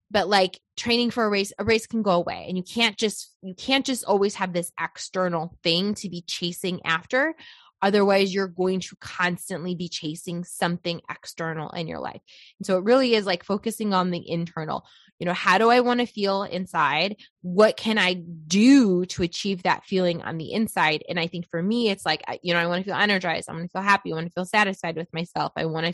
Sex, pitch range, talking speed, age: female, 175-205 Hz, 235 wpm, 20-39